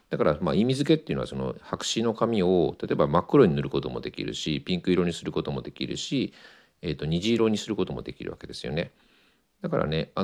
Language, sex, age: Japanese, male, 50-69